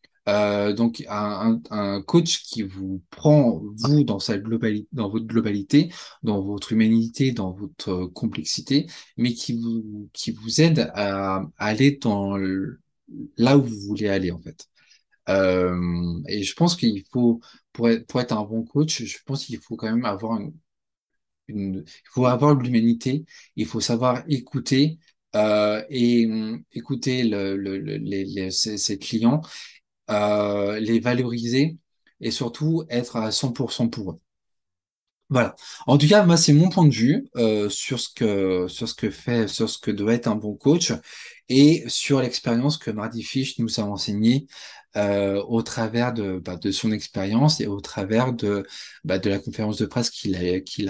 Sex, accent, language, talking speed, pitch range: male, French, French, 175 wpm, 105-135 Hz